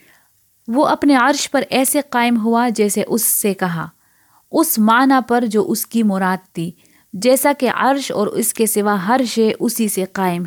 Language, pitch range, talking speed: Urdu, 200-245 Hz, 180 wpm